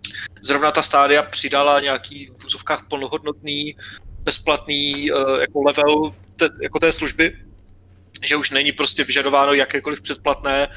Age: 30-49